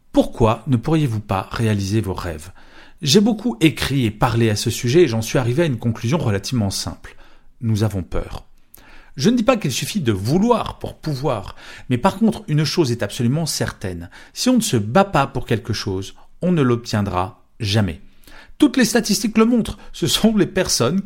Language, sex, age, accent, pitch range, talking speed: French, male, 40-59, French, 105-175 Hz, 190 wpm